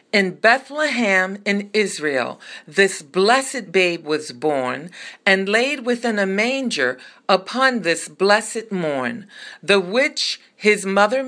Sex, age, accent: female, 50-69, American